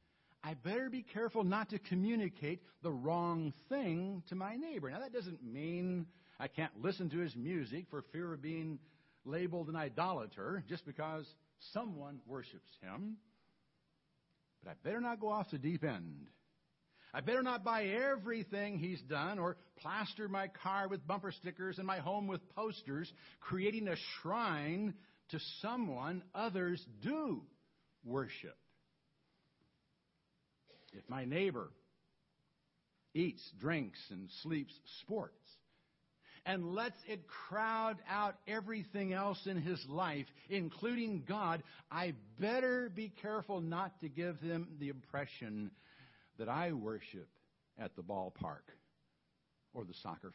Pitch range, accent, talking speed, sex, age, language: 155-205 Hz, American, 130 wpm, male, 60-79, English